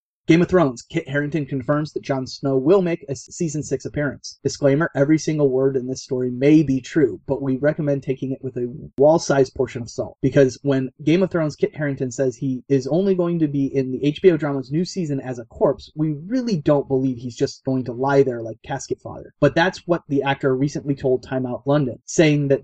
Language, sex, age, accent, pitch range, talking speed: English, male, 30-49, American, 130-150 Hz, 225 wpm